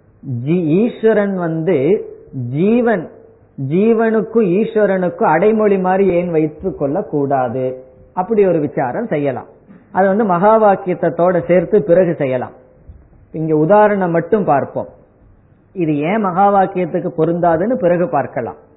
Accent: native